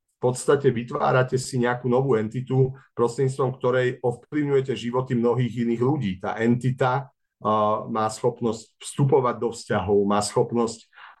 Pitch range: 105-125 Hz